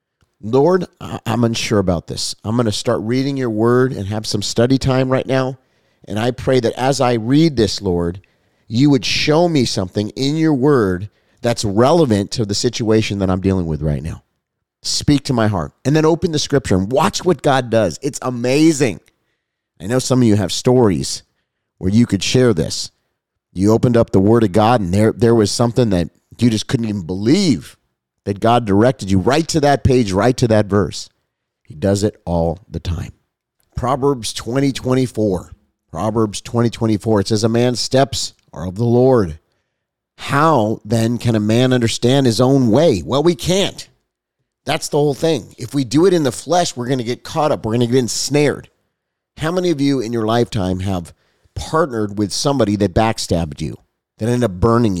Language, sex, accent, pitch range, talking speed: English, male, American, 105-130 Hz, 195 wpm